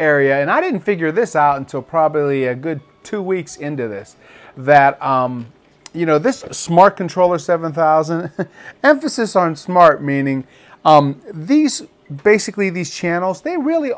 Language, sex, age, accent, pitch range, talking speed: English, male, 40-59, American, 145-205 Hz, 145 wpm